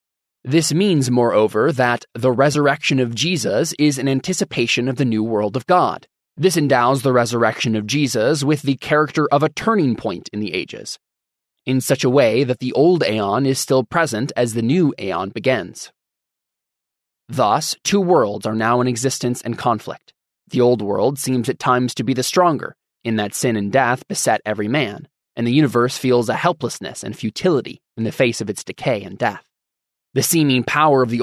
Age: 20-39